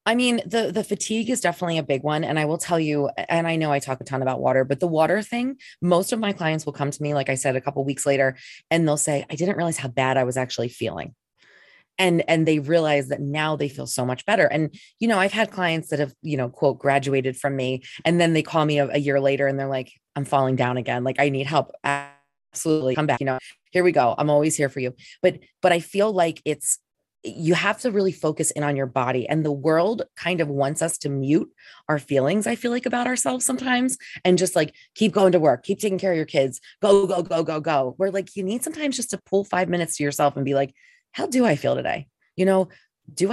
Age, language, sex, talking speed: 20-39, English, female, 260 wpm